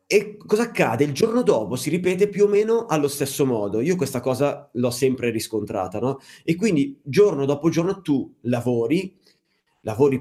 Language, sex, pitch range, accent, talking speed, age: Italian, male, 135-200 Hz, native, 170 wpm, 30-49